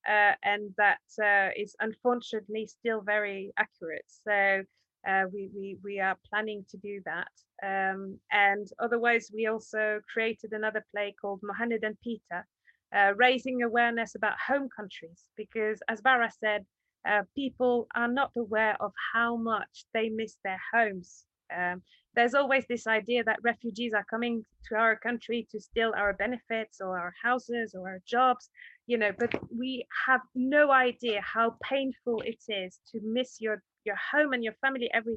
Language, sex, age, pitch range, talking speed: English, female, 20-39, 205-245 Hz, 160 wpm